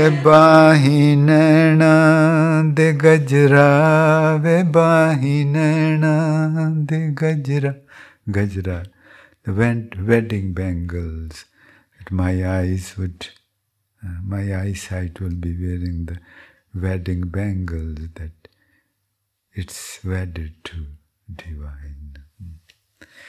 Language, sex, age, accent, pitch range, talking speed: English, male, 50-69, Indian, 95-155 Hz, 65 wpm